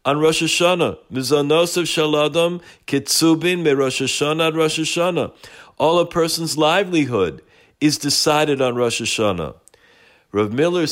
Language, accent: English, American